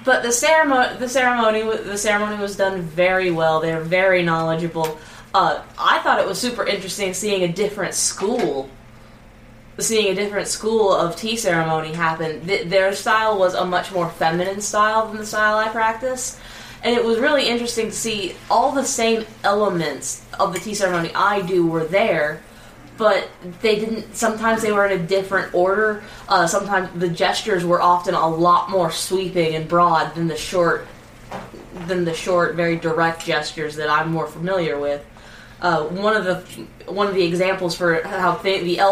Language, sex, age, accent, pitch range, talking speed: English, female, 10-29, American, 165-200 Hz, 175 wpm